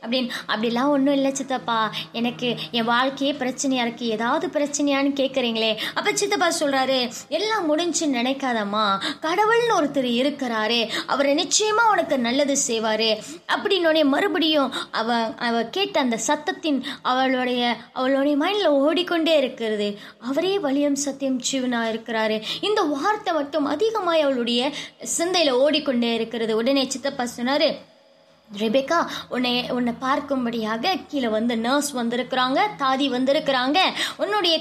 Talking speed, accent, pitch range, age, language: 115 wpm, native, 245-310 Hz, 20-39, Tamil